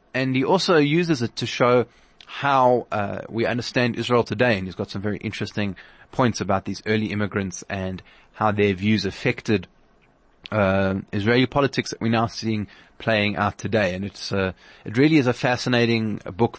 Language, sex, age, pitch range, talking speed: English, male, 20-39, 100-125 Hz, 175 wpm